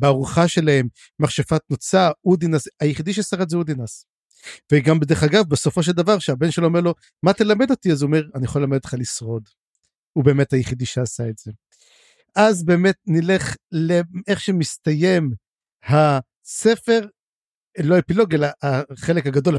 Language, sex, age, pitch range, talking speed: Hebrew, male, 50-69, 140-195 Hz, 145 wpm